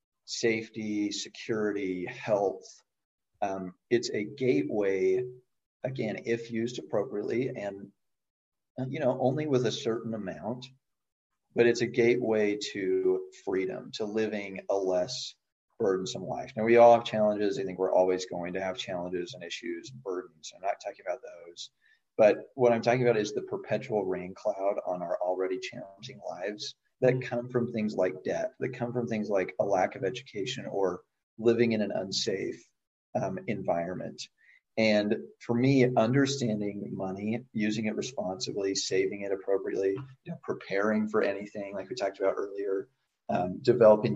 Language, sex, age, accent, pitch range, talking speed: English, male, 40-59, American, 100-125 Hz, 150 wpm